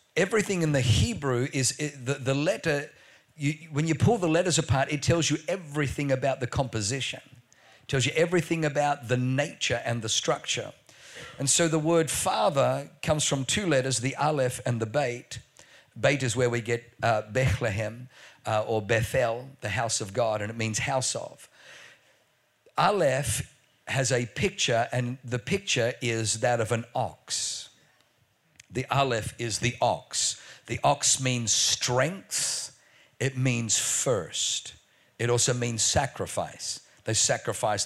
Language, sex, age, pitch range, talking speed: English, male, 50-69, 115-145 Hz, 145 wpm